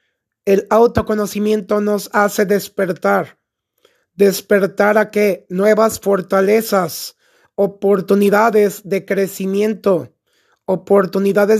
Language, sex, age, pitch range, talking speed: Spanish, male, 30-49, 195-220 Hz, 70 wpm